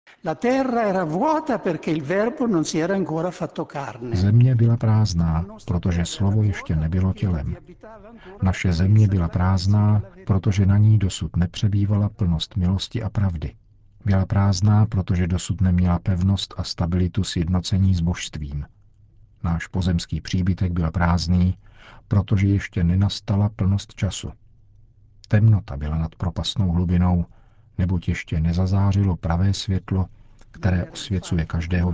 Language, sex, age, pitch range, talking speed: Czech, male, 50-69, 90-110 Hz, 105 wpm